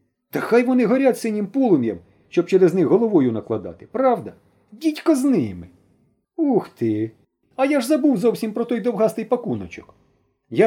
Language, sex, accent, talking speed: Ukrainian, male, native, 150 wpm